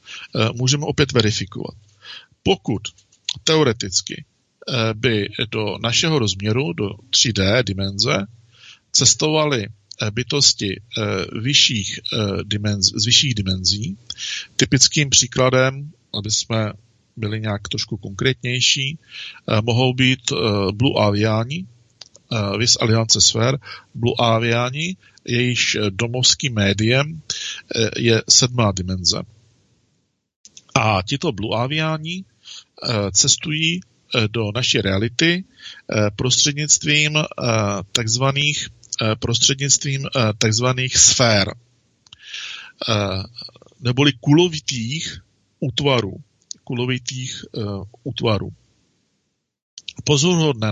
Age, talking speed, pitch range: 50-69, 70 wpm, 105-135 Hz